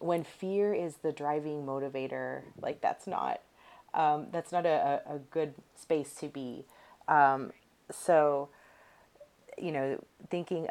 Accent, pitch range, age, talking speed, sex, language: American, 140-160 Hz, 30-49, 130 wpm, female, English